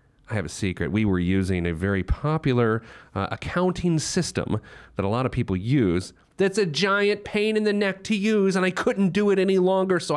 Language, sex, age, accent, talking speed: English, male, 30-49, American, 210 wpm